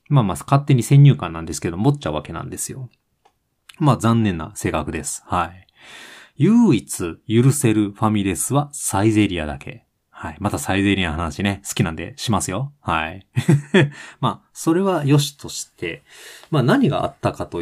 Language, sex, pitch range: Japanese, male, 90-135 Hz